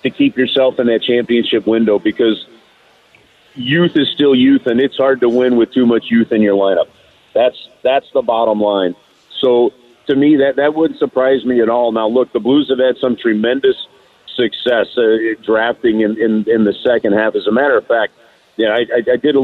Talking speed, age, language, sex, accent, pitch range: 205 wpm, 50-69, English, male, American, 110-145 Hz